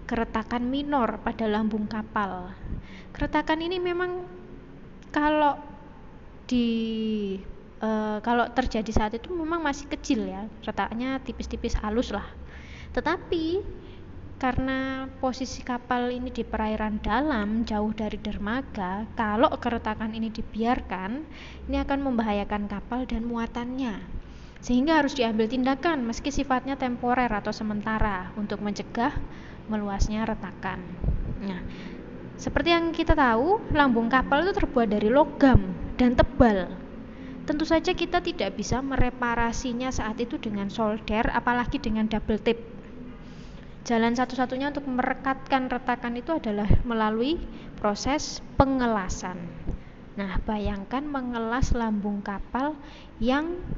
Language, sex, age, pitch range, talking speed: Indonesian, female, 20-39, 215-270 Hz, 110 wpm